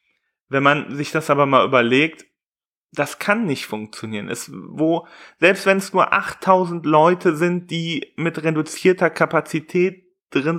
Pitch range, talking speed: 125-165 Hz, 140 wpm